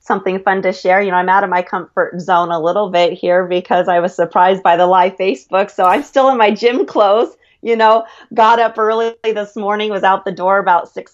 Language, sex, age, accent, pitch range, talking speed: English, female, 30-49, American, 175-200 Hz, 235 wpm